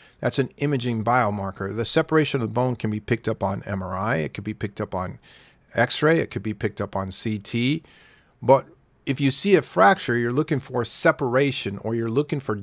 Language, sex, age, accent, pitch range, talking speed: English, male, 40-59, American, 110-140 Hz, 205 wpm